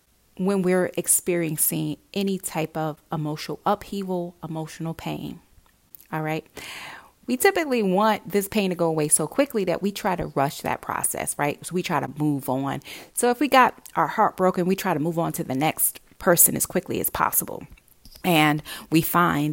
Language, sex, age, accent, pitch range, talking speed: English, female, 30-49, American, 150-185 Hz, 180 wpm